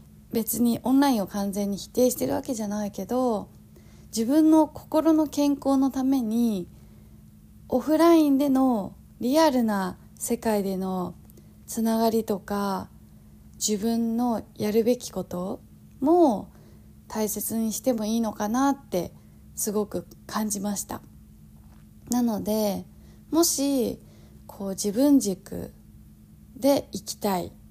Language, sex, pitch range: Japanese, female, 195-260 Hz